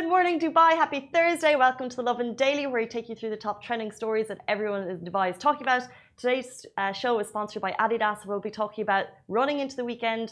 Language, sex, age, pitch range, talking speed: Arabic, female, 30-49, 190-225 Hz, 245 wpm